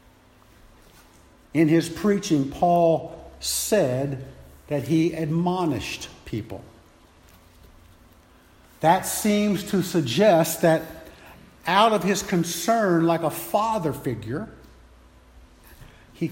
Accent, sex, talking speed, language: American, male, 85 wpm, English